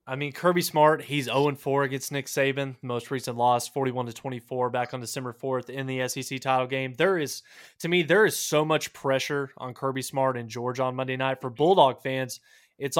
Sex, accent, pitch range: male, American, 130-165 Hz